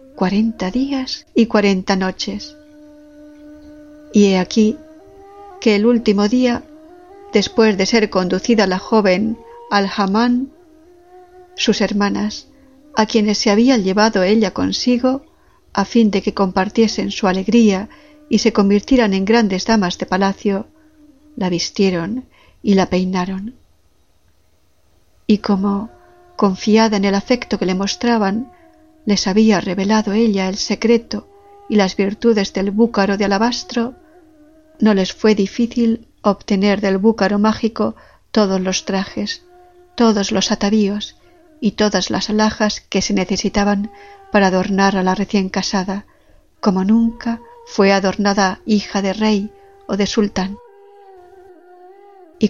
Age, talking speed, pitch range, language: 50-69, 125 wpm, 195-260 Hz, Spanish